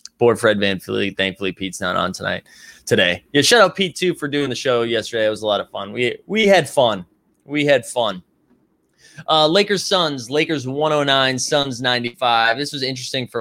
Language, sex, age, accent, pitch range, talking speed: English, male, 20-39, American, 110-150 Hz, 185 wpm